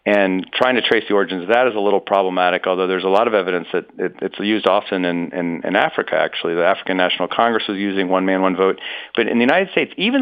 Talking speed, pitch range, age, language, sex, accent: 260 wpm, 95-110 Hz, 40-59, English, male, American